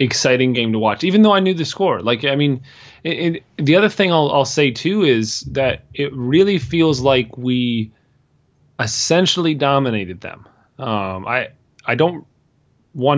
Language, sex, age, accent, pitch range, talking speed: English, male, 30-49, American, 120-150 Hz, 170 wpm